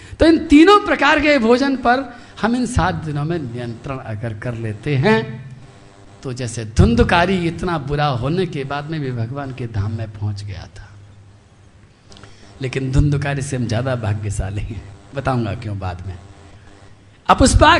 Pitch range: 110-165 Hz